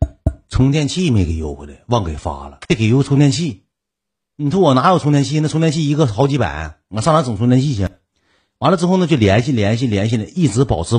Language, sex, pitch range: Chinese, male, 95-140 Hz